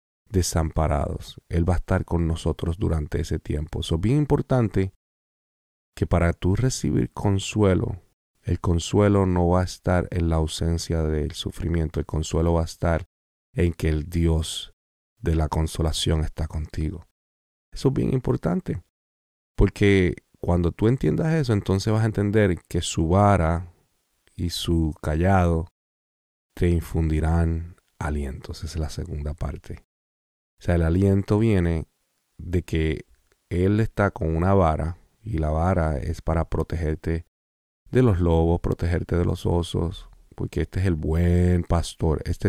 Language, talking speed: Spanish, 145 wpm